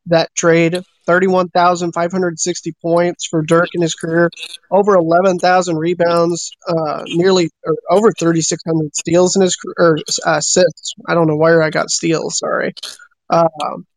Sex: male